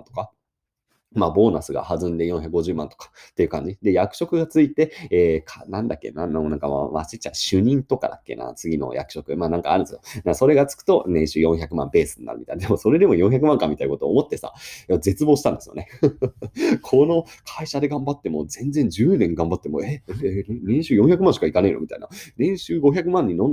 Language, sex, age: Japanese, male, 30-49